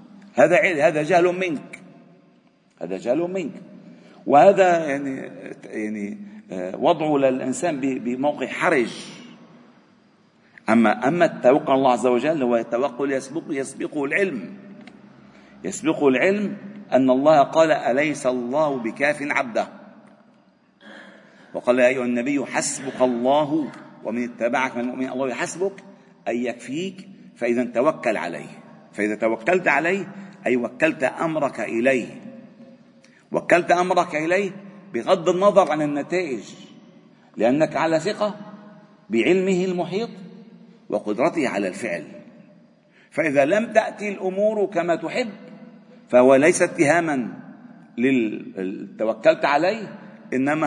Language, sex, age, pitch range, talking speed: Arabic, male, 50-69, 135-210 Hz, 100 wpm